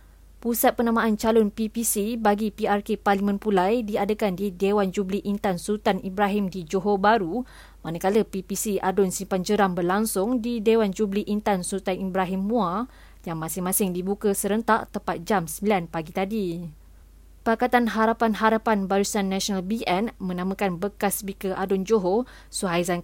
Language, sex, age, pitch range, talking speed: Malay, female, 20-39, 190-220 Hz, 135 wpm